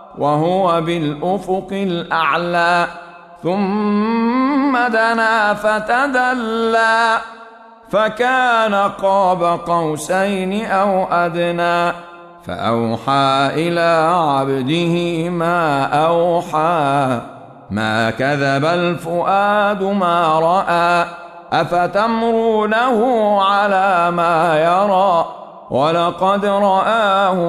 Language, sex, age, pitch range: Arabic, male, 50-69, 135-190 Hz